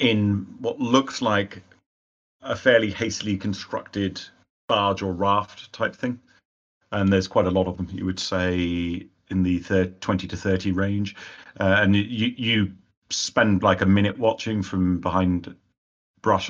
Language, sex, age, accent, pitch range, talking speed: English, male, 40-59, British, 90-100 Hz, 155 wpm